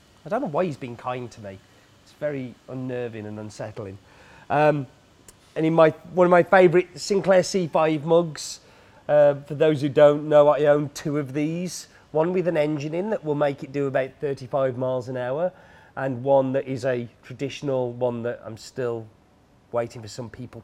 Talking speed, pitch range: 190 wpm, 120-170 Hz